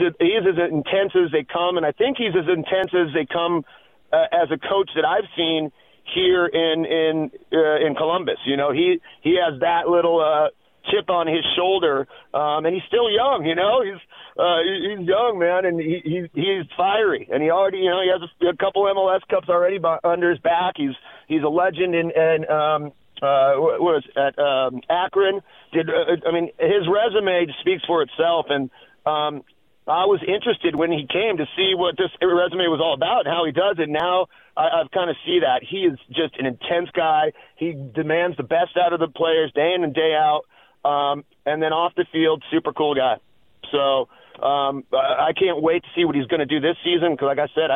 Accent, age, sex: American, 40-59, male